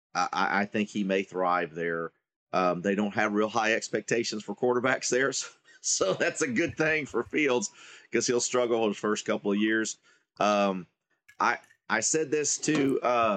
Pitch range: 95-120 Hz